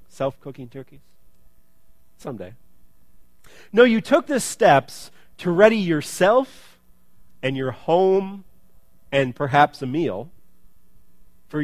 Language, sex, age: English, male, 40-59